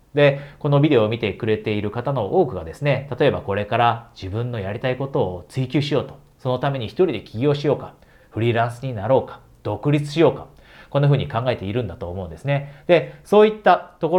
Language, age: Japanese, 40-59